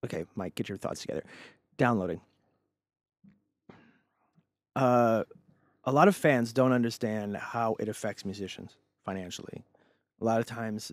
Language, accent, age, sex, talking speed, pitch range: English, American, 30-49, male, 125 wpm, 100-120 Hz